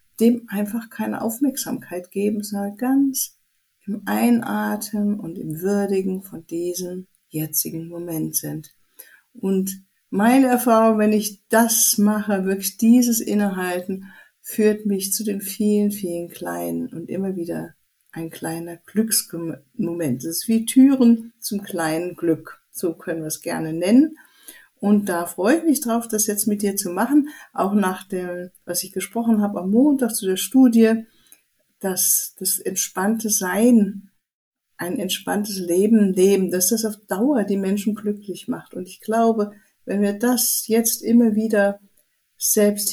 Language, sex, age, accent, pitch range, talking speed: German, female, 50-69, German, 185-230 Hz, 145 wpm